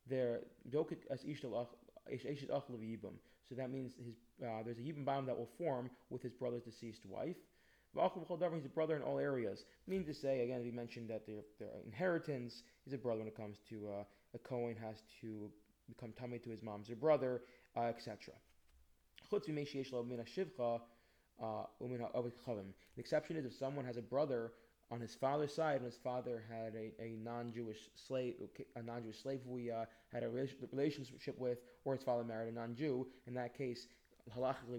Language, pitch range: English, 110-130 Hz